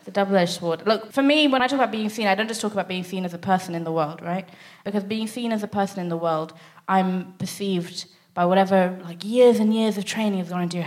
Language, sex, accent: English, female, British